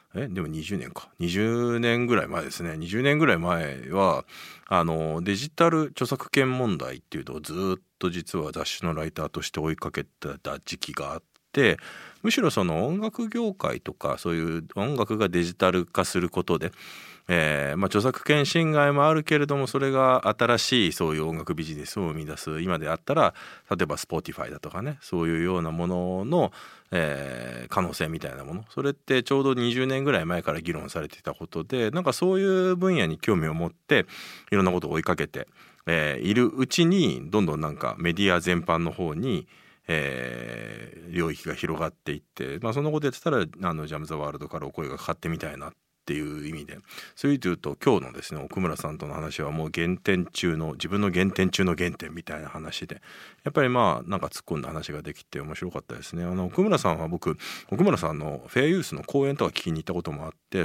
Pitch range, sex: 80-130 Hz, male